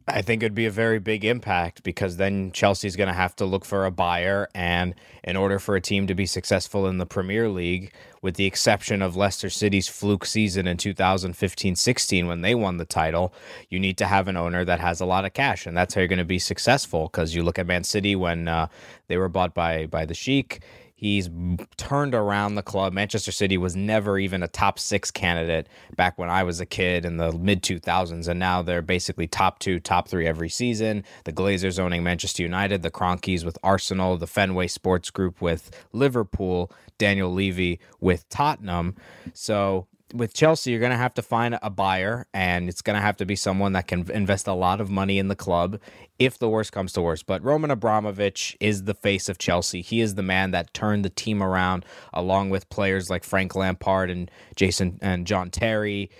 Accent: American